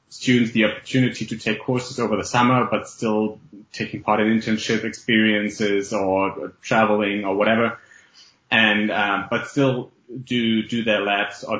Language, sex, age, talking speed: English, male, 20-39, 150 wpm